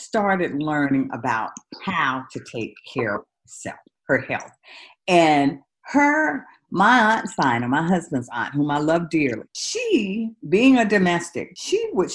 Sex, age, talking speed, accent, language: female, 50-69, 145 wpm, American, English